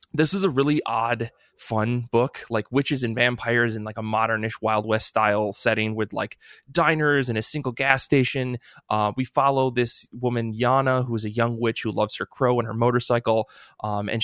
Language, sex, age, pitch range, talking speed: English, male, 20-39, 115-135 Hz, 200 wpm